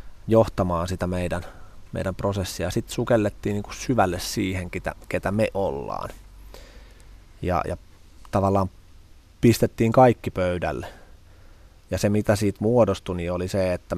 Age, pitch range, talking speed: 20-39, 85-100 Hz, 115 wpm